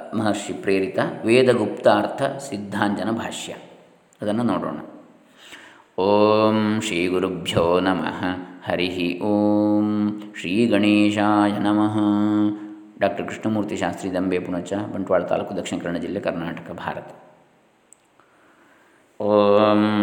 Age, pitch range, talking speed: 20-39, 95-105 Hz, 65 wpm